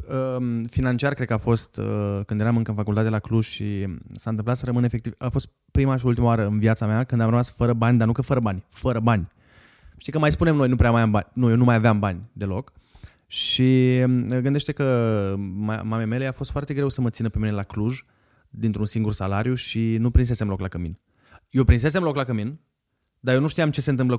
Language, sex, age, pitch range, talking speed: Romanian, male, 20-39, 105-135 Hz, 230 wpm